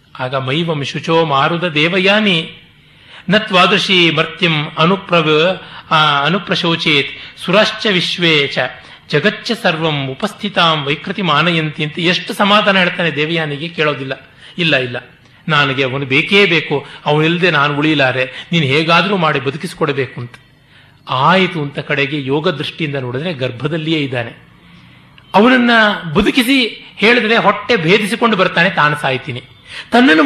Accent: native